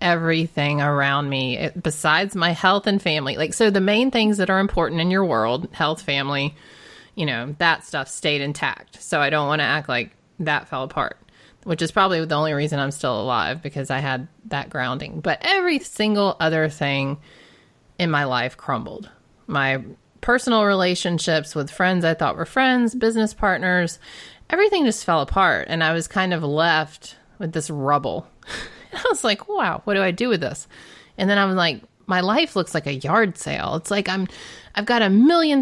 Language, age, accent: English, 30-49, American